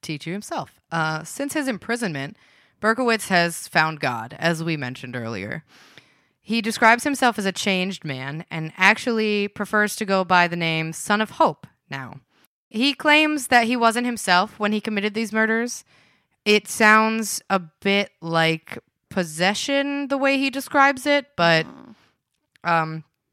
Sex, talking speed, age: female, 150 wpm, 20-39